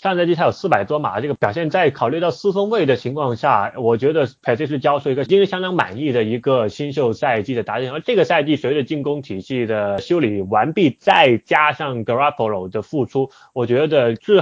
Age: 20-39